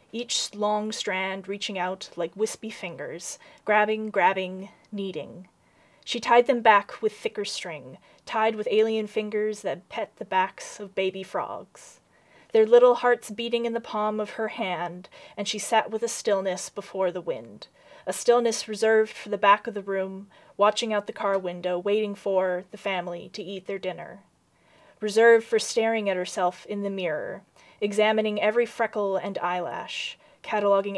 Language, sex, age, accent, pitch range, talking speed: English, female, 30-49, American, 190-220 Hz, 165 wpm